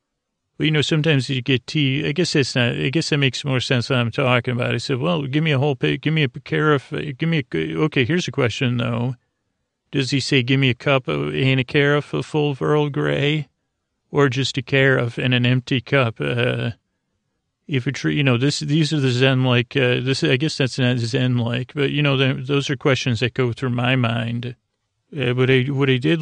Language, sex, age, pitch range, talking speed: English, male, 40-59, 125-140 Hz, 230 wpm